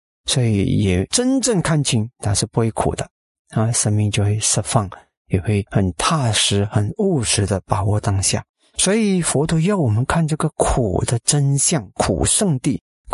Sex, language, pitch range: male, Chinese, 105-150 Hz